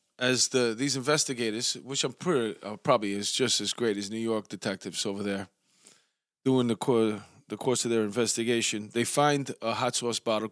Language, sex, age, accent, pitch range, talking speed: English, male, 20-39, American, 105-125 Hz, 190 wpm